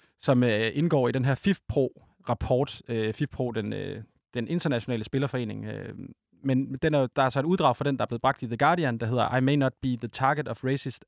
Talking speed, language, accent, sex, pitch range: 240 wpm, Danish, native, male, 115-145 Hz